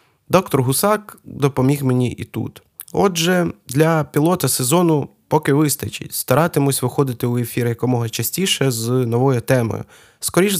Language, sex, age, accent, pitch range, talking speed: Ukrainian, male, 20-39, native, 120-150 Hz, 125 wpm